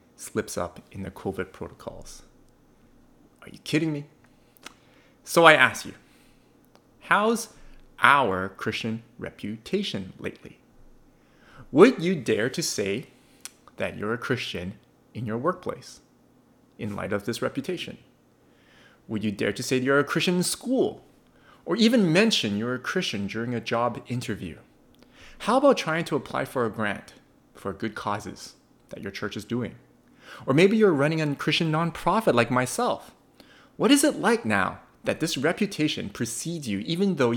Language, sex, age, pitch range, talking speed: English, male, 30-49, 110-180 Hz, 150 wpm